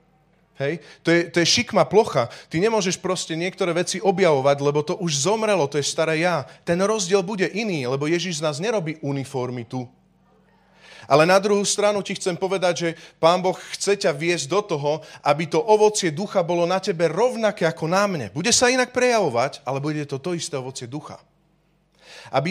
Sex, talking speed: male, 185 wpm